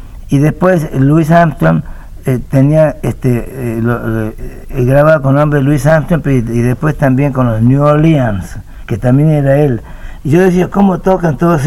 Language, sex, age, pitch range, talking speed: Spanish, male, 60-79, 110-140 Hz, 180 wpm